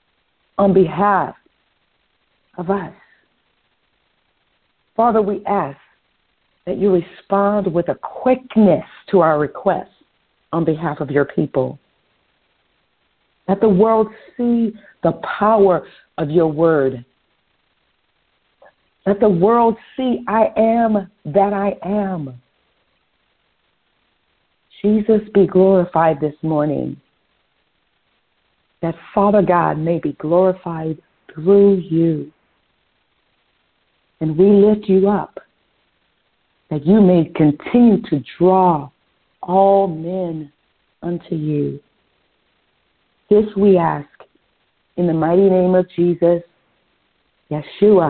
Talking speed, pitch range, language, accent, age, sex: 95 wpm, 155-200 Hz, English, American, 50-69, female